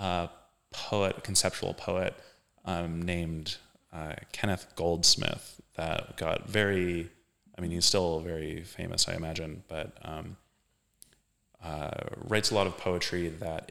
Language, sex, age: English, male, 30-49